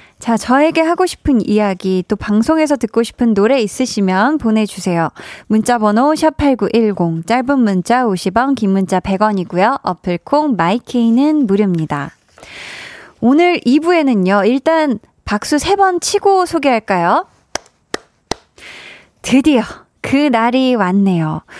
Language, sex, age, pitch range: Korean, female, 20-39, 200-280 Hz